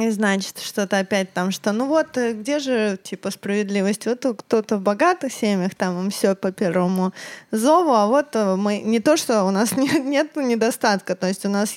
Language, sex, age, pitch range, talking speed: Russian, female, 20-39, 200-260 Hz, 185 wpm